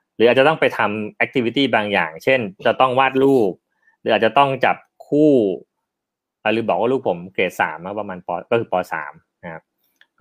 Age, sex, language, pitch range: 30-49, male, Thai, 100-125 Hz